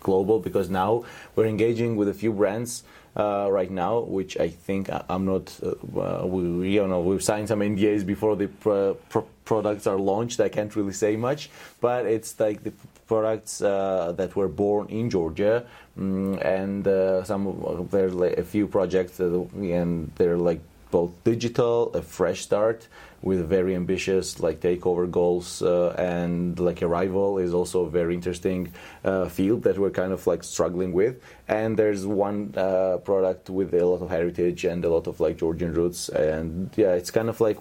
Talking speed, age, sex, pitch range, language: 185 wpm, 30-49, male, 90-105 Hz, English